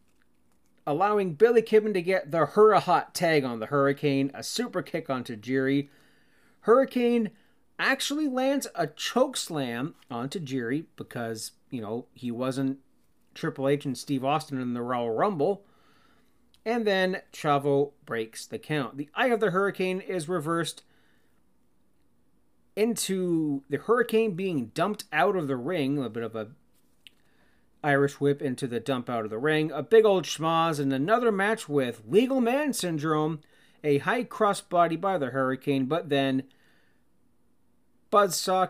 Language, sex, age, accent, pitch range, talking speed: English, male, 30-49, American, 135-200 Hz, 145 wpm